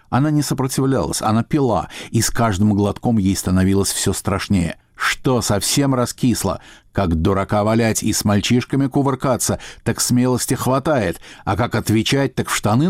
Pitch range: 105-130 Hz